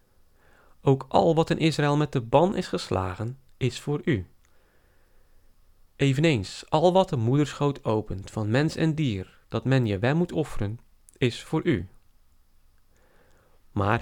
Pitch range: 105-145 Hz